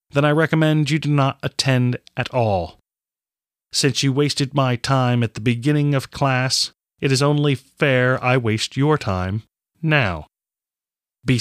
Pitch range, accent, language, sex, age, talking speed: 100-145 Hz, American, English, male, 30-49, 155 wpm